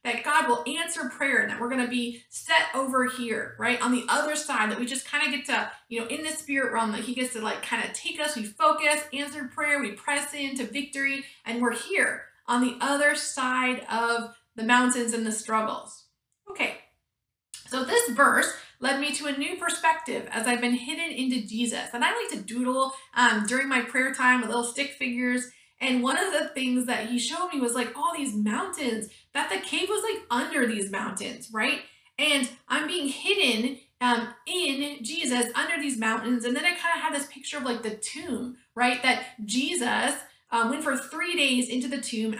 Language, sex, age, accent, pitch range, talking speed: English, female, 30-49, American, 235-295 Hz, 210 wpm